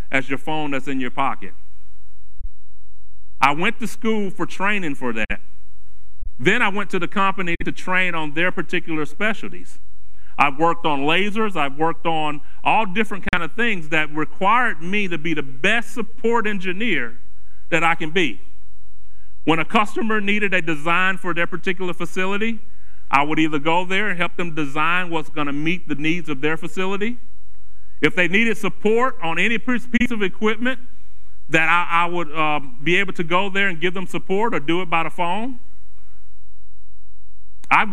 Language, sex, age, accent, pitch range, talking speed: English, male, 40-59, American, 125-190 Hz, 170 wpm